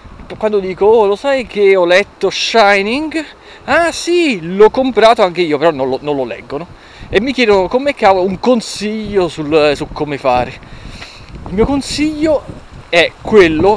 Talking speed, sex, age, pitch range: 155 wpm, male, 30-49, 140-225 Hz